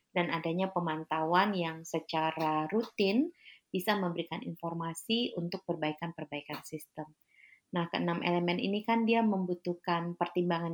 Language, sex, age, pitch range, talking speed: Indonesian, female, 30-49, 165-195 Hz, 115 wpm